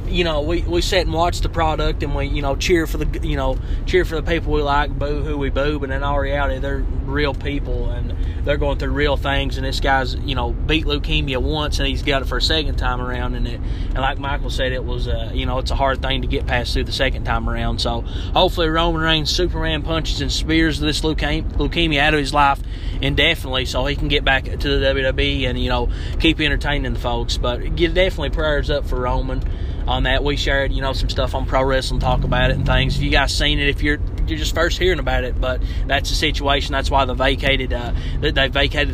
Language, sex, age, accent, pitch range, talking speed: English, male, 20-39, American, 90-140 Hz, 245 wpm